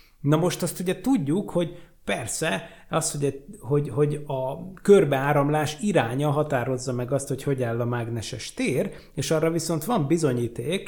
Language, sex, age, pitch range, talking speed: Hungarian, male, 30-49, 135-165 Hz, 145 wpm